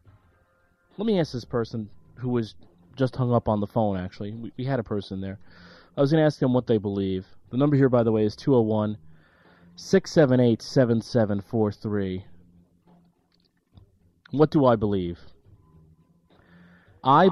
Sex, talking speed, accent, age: male, 145 wpm, American, 30-49